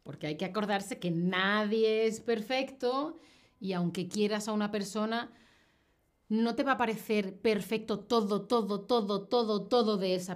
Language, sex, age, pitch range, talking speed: Spanish, female, 30-49, 185-245 Hz, 155 wpm